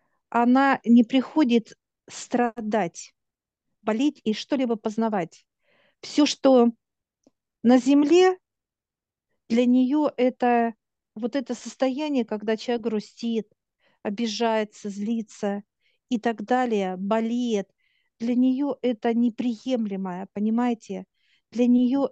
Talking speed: 90 wpm